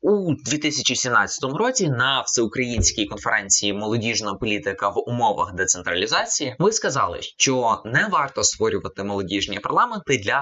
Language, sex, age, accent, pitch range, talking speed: Ukrainian, male, 20-39, native, 105-160 Hz, 115 wpm